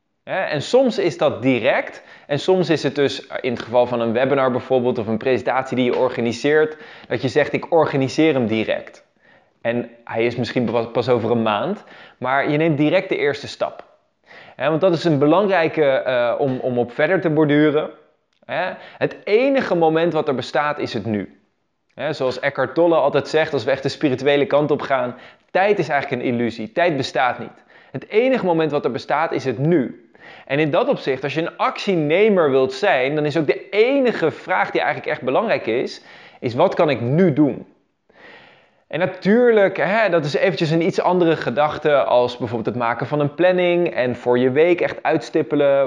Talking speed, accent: 190 wpm, Dutch